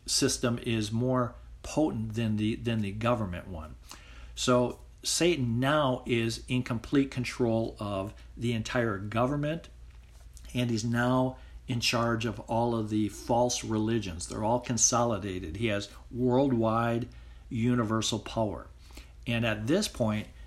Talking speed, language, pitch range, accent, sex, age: 130 wpm, English, 100-120 Hz, American, male, 50-69